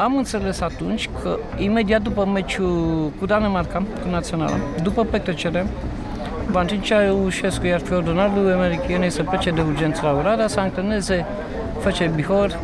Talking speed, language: 145 wpm, Romanian